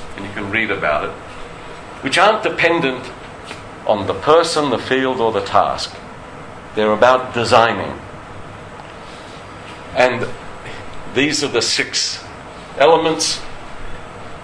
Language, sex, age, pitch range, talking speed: English, male, 50-69, 100-130 Hz, 110 wpm